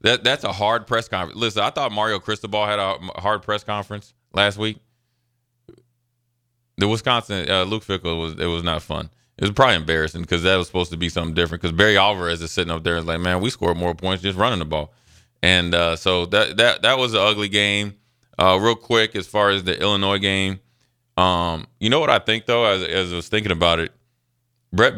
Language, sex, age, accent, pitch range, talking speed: English, male, 20-39, American, 85-110 Hz, 225 wpm